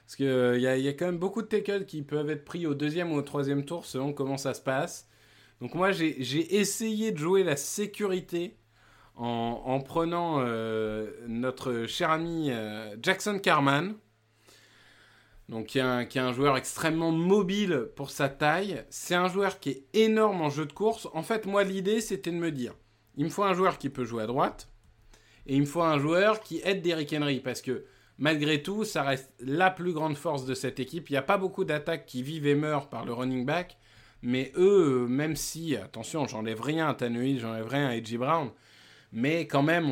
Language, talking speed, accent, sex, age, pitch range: French, 210 wpm, French, male, 20-39, 120-165 Hz